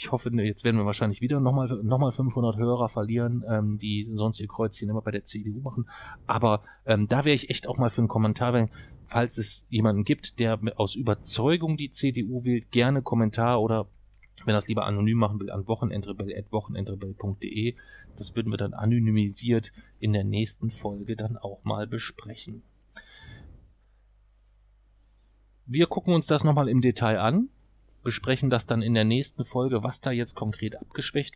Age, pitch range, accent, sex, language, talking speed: 30-49, 105-125 Hz, German, male, German, 170 wpm